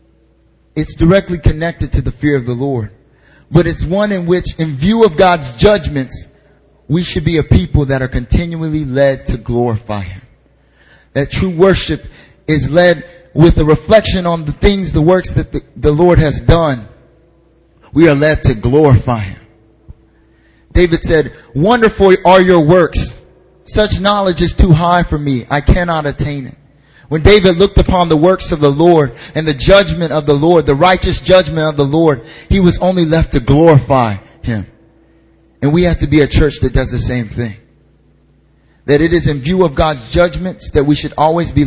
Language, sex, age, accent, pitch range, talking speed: English, male, 30-49, American, 125-165 Hz, 180 wpm